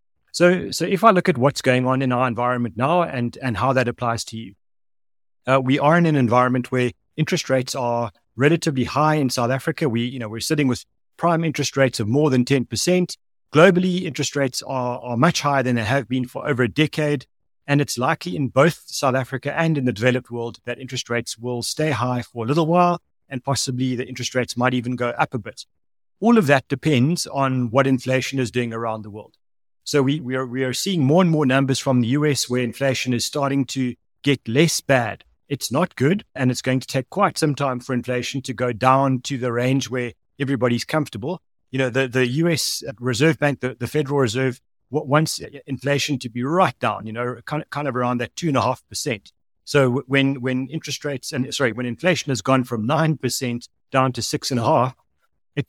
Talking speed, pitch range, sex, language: 220 wpm, 125-145 Hz, male, English